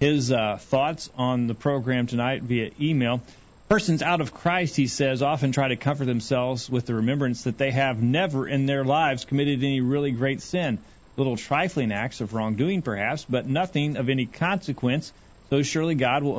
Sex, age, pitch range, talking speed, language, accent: male, 40-59, 115-140 Hz, 185 wpm, English, American